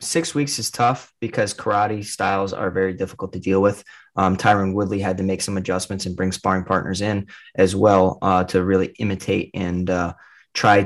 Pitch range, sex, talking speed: 95-115 Hz, male, 195 wpm